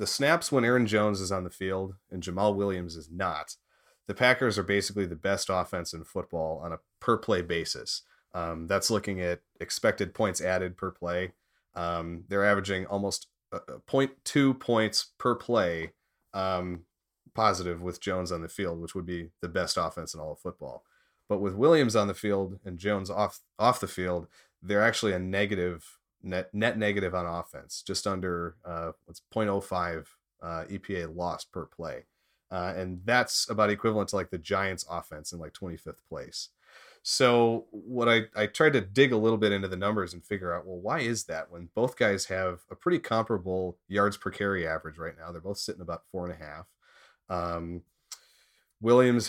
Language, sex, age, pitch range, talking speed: English, male, 30-49, 90-105 Hz, 185 wpm